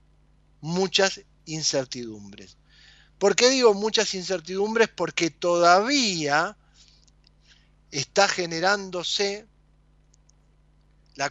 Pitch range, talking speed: 135-190 Hz, 65 wpm